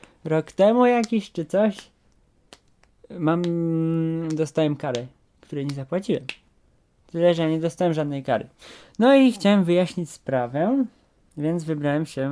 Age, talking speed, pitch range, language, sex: 20-39, 120 wpm, 135-170 Hz, Polish, male